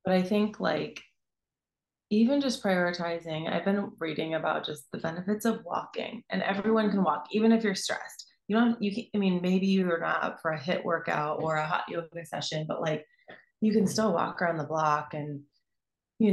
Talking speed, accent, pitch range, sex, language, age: 200 wpm, American, 155-195 Hz, female, English, 30-49